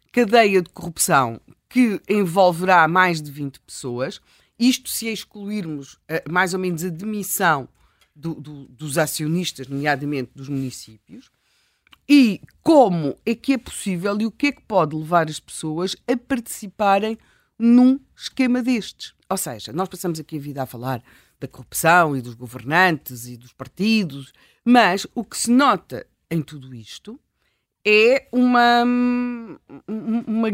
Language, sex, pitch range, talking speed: Portuguese, female, 150-230 Hz, 140 wpm